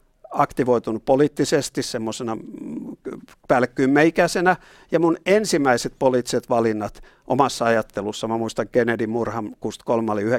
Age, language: 60-79, Finnish